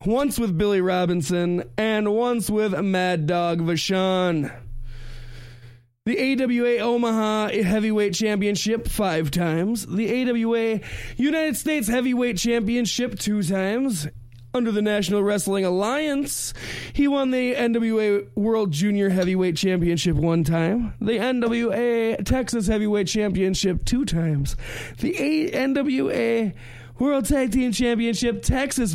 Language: English